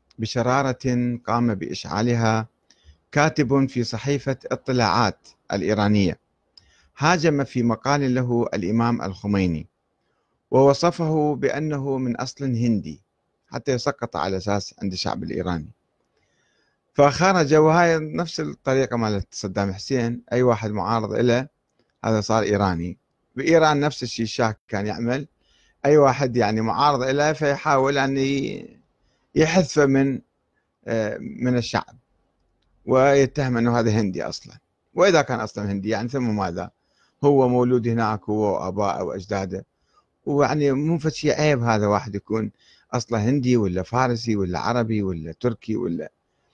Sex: male